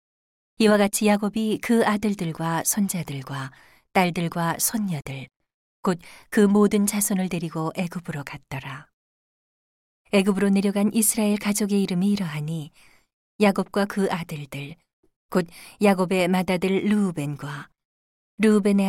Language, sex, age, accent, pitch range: Korean, female, 40-59, native, 165-205 Hz